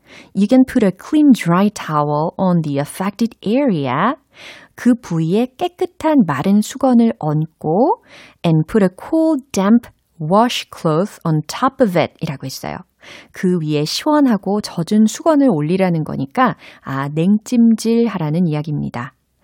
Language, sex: Korean, female